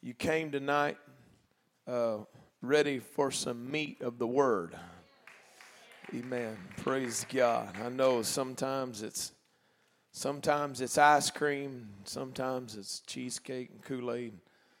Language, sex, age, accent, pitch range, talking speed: English, male, 40-59, American, 120-155 Hz, 110 wpm